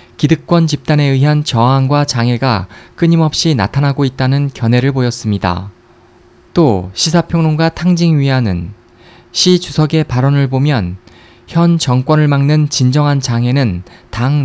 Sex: male